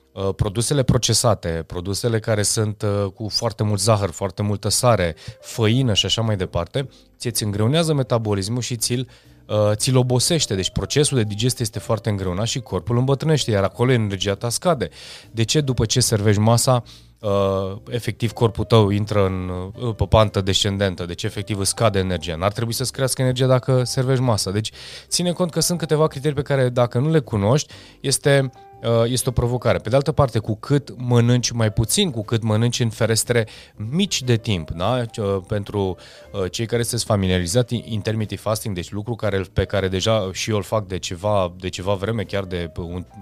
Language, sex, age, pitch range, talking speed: Romanian, male, 20-39, 100-120 Hz, 180 wpm